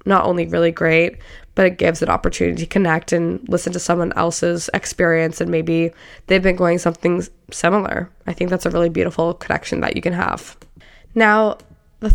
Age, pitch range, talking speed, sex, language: 10-29, 170-195 Hz, 185 wpm, female, English